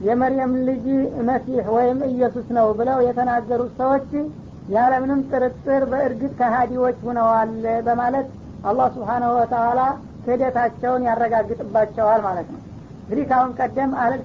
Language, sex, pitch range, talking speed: Amharic, female, 235-260 Hz, 120 wpm